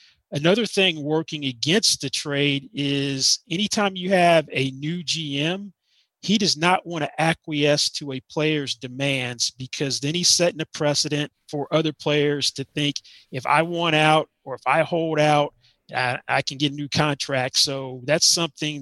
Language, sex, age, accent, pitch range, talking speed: English, male, 30-49, American, 140-165 Hz, 170 wpm